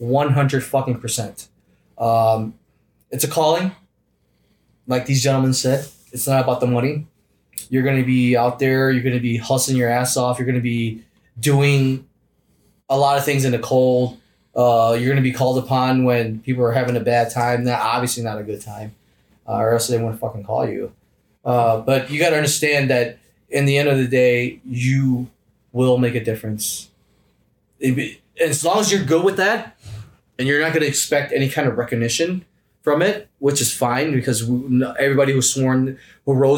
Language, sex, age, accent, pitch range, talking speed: English, male, 20-39, American, 120-140 Hz, 190 wpm